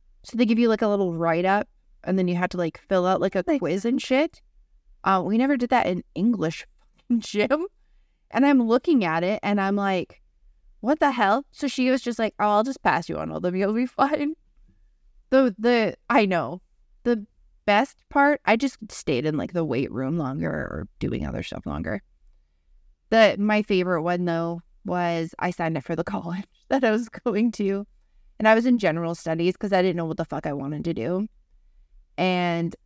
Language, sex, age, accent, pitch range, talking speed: English, female, 20-39, American, 165-220 Hz, 210 wpm